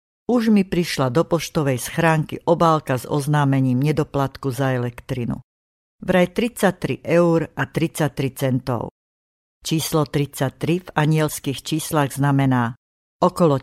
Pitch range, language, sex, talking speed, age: 135-165 Hz, Slovak, female, 110 wpm, 60-79